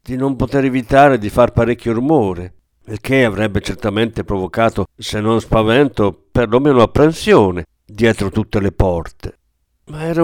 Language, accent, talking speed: Italian, native, 140 wpm